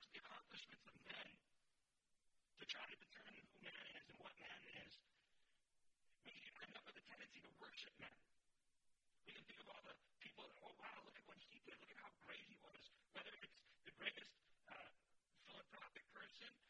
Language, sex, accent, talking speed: English, male, American, 190 wpm